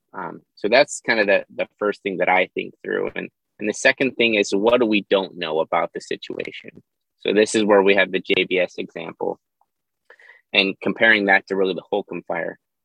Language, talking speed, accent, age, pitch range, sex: English, 205 wpm, American, 20-39, 100-120 Hz, male